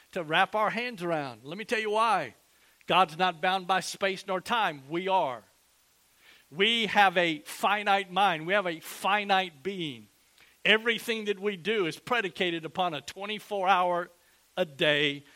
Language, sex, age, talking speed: English, male, 50-69, 160 wpm